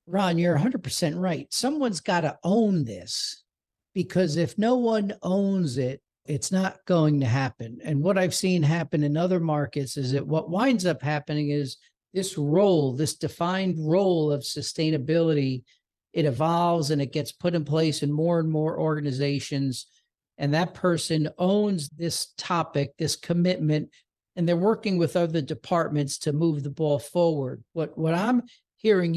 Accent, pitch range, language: American, 140-175 Hz, English